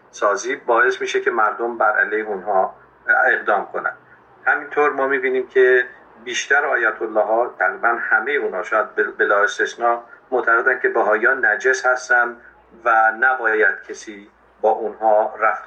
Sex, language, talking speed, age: male, Persian, 135 wpm, 50-69